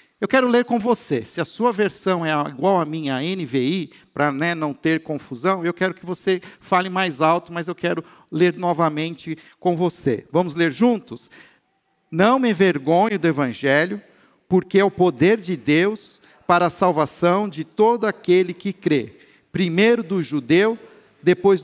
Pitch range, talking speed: 160-205 Hz, 165 wpm